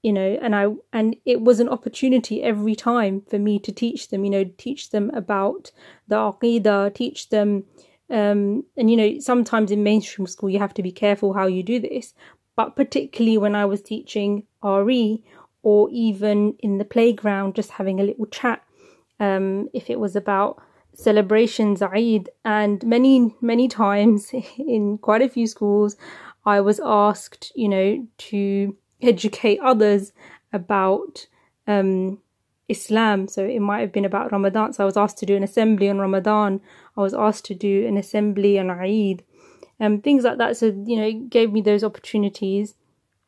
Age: 30-49